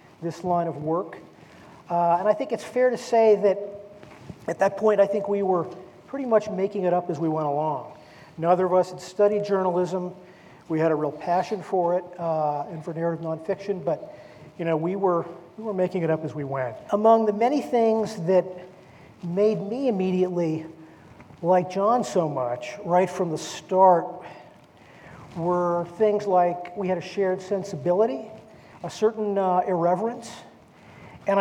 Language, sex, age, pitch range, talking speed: English, male, 40-59, 170-205 Hz, 170 wpm